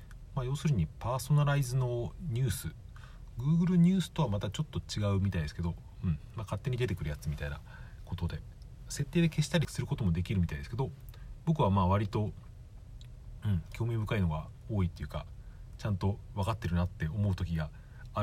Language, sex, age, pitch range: Japanese, male, 40-59, 95-125 Hz